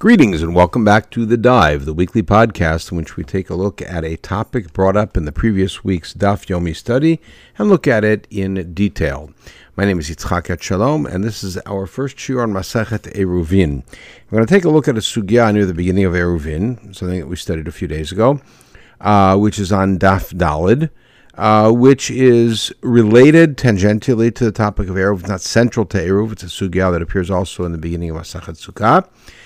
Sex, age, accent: male, 60-79, American